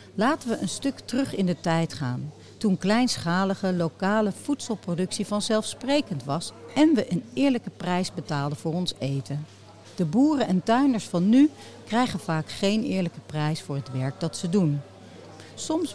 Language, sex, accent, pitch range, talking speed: Dutch, female, Dutch, 145-210 Hz, 160 wpm